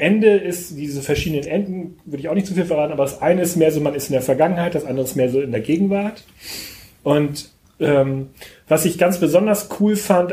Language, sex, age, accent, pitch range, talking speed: German, male, 30-49, German, 140-190 Hz, 225 wpm